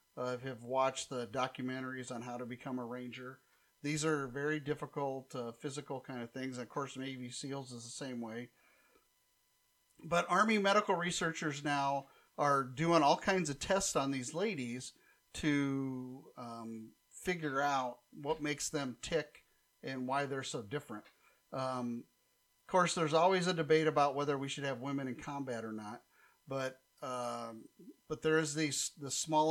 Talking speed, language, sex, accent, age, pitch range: 165 wpm, English, male, American, 40-59, 125-155 Hz